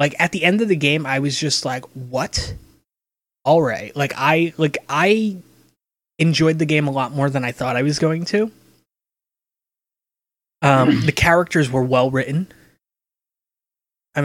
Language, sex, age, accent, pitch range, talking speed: English, male, 20-39, American, 125-160 Hz, 160 wpm